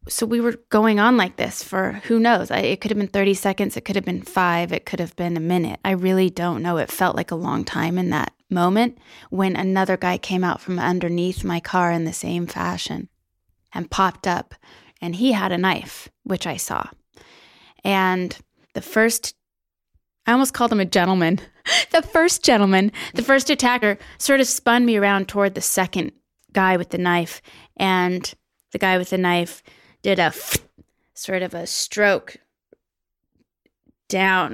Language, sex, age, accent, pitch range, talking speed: English, female, 20-39, American, 175-210 Hz, 180 wpm